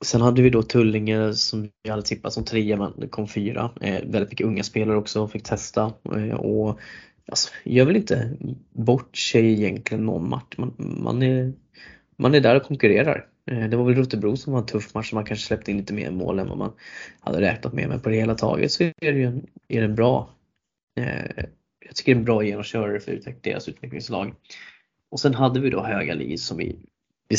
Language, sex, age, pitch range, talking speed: Swedish, male, 20-39, 105-120 Hz, 225 wpm